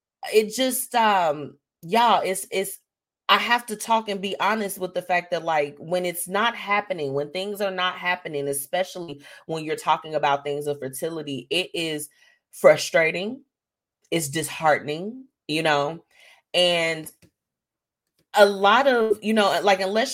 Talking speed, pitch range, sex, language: 150 wpm, 150-195 Hz, female, English